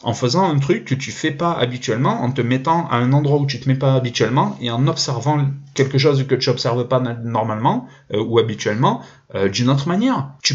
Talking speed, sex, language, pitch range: 220 wpm, male, French, 120-150 Hz